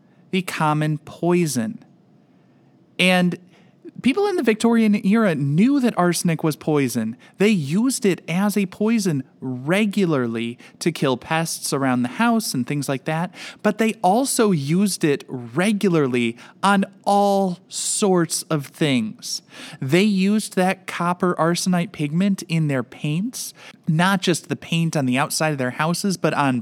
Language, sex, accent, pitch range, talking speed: English, male, American, 145-200 Hz, 140 wpm